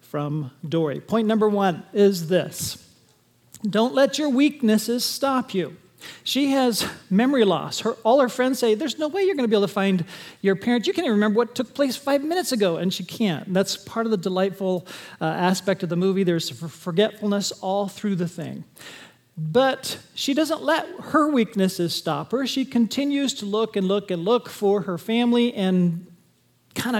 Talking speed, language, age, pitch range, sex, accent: 185 wpm, English, 40-59, 175-230 Hz, male, American